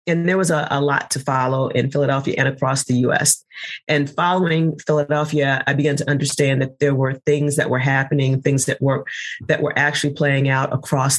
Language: English